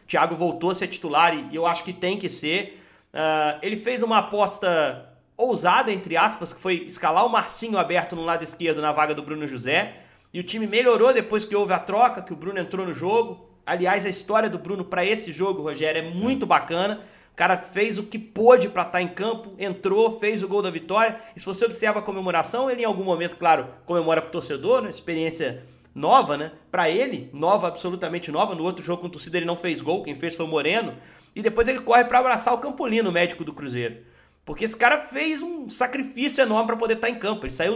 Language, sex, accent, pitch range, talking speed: Portuguese, male, Brazilian, 170-225 Hz, 220 wpm